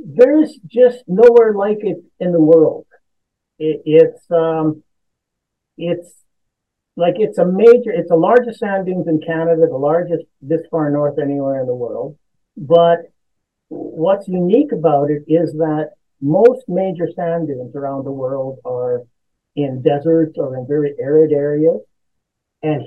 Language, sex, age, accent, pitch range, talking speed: English, male, 50-69, American, 150-195 Hz, 145 wpm